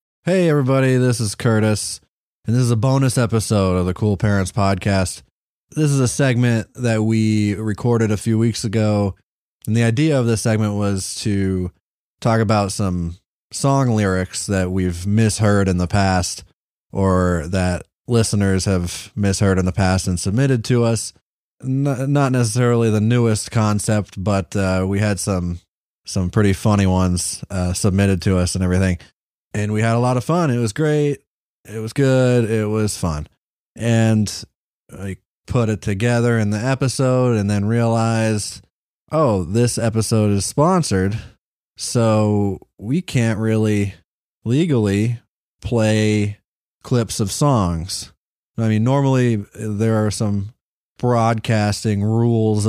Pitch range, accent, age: 95-120 Hz, American, 20-39